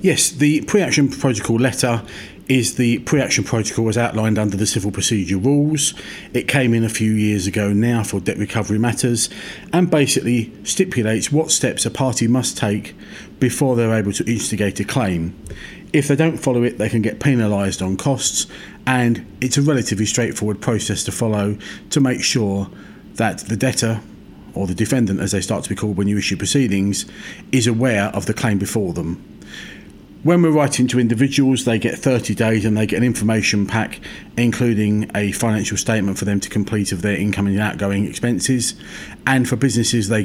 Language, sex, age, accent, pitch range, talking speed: English, male, 40-59, British, 100-125 Hz, 180 wpm